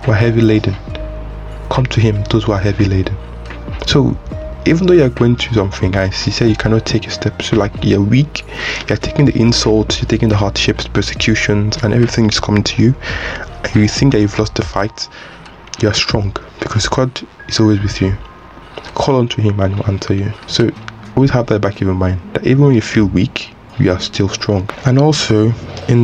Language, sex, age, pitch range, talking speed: English, male, 20-39, 100-120 Hz, 225 wpm